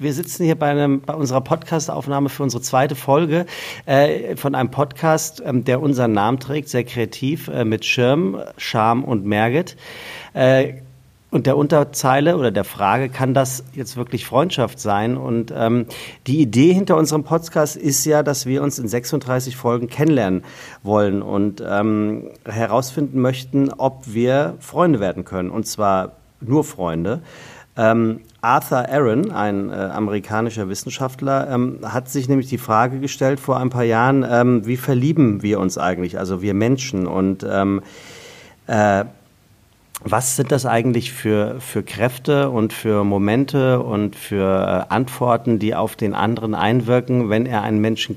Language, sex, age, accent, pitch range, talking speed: German, male, 40-59, German, 110-140 Hz, 155 wpm